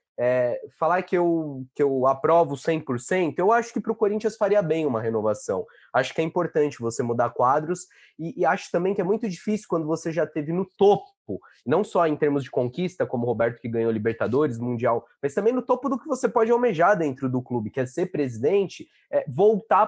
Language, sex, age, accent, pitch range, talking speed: Portuguese, male, 20-39, Brazilian, 135-195 Hz, 210 wpm